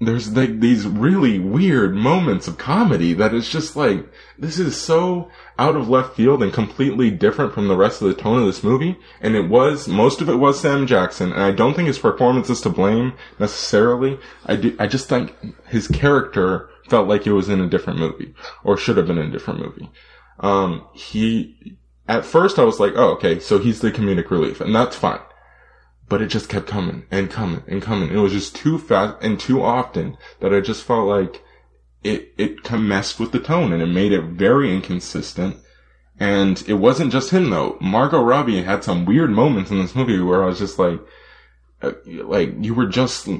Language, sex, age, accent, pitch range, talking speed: English, male, 20-39, American, 95-130 Hz, 205 wpm